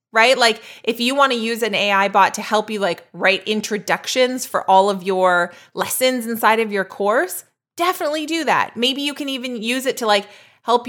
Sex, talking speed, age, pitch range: female, 205 wpm, 20-39, 195-245 Hz